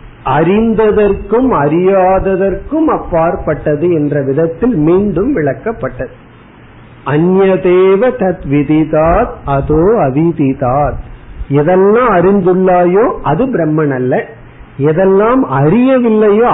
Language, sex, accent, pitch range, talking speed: Tamil, male, native, 145-195 Hz, 35 wpm